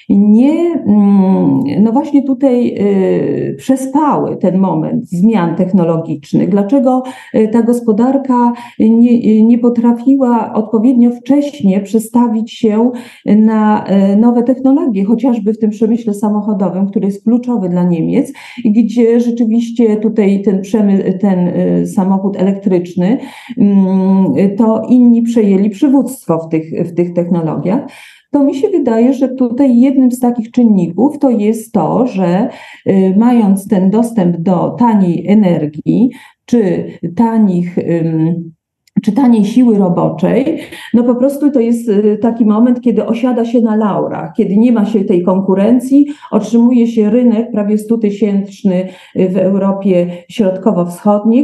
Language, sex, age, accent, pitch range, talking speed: Polish, female, 40-59, native, 195-245 Hz, 115 wpm